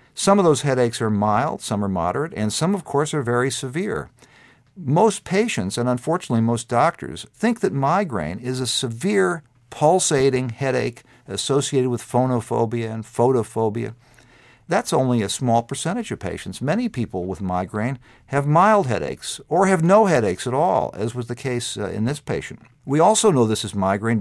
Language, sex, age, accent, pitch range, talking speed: English, male, 50-69, American, 110-145 Hz, 170 wpm